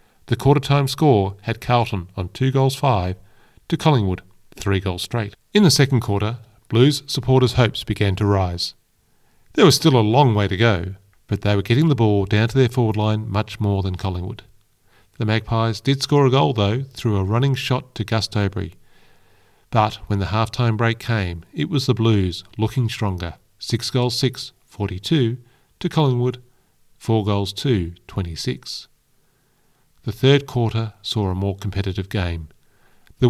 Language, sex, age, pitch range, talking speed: English, male, 40-59, 100-125 Hz, 165 wpm